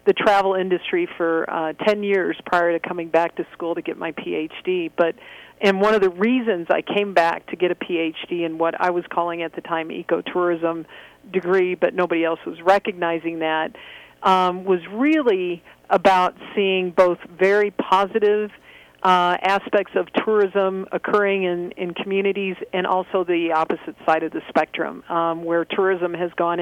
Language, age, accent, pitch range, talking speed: English, 50-69, American, 170-195 Hz, 170 wpm